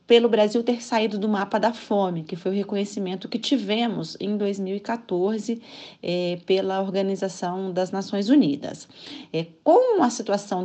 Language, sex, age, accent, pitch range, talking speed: Portuguese, female, 40-59, Brazilian, 190-250 Hz, 135 wpm